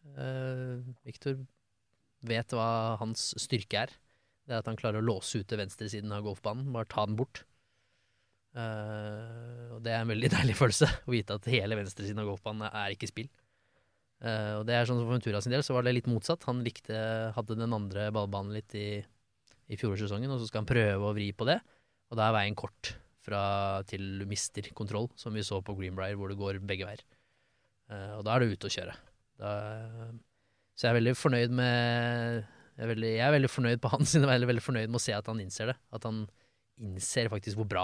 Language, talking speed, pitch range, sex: English, 210 wpm, 105-120 Hz, male